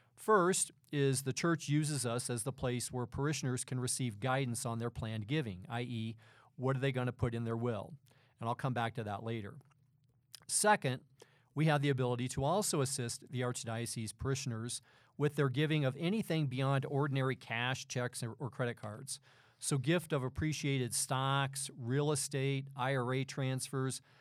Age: 40-59